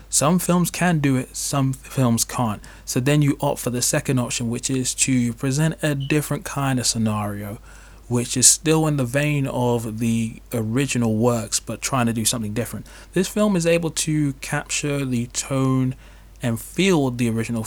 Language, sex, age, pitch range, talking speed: English, male, 20-39, 110-135 Hz, 185 wpm